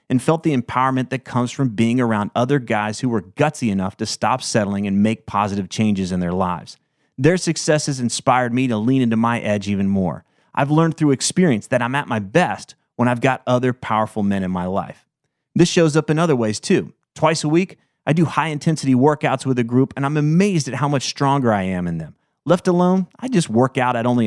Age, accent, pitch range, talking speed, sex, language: 30-49, American, 110-150 Hz, 225 wpm, male, English